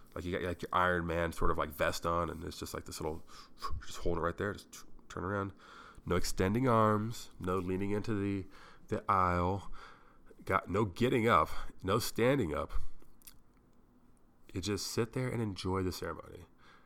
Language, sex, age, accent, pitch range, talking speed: English, male, 30-49, American, 85-115 Hz, 175 wpm